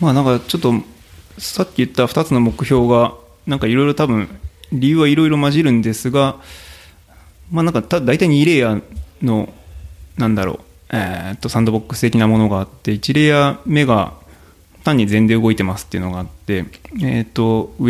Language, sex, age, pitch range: Japanese, male, 20-39, 100-135 Hz